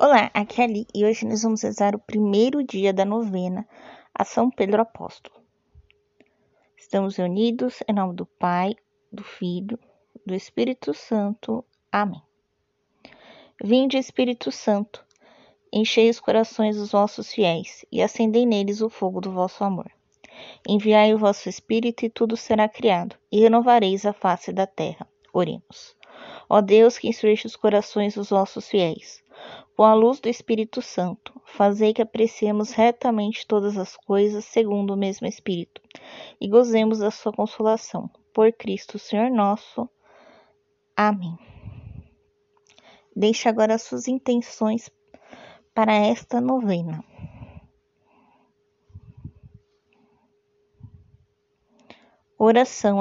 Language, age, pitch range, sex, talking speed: Portuguese, 20-39, 205-235 Hz, female, 120 wpm